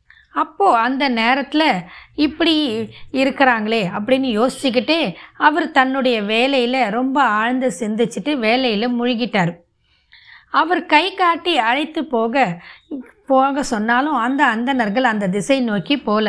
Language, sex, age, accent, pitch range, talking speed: Tamil, female, 20-39, native, 220-285 Hz, 105 wpm